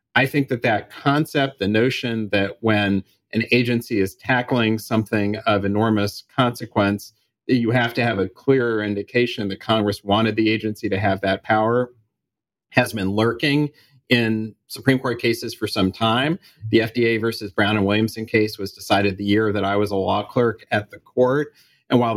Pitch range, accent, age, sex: 105-125 Hz, American, 40-59, male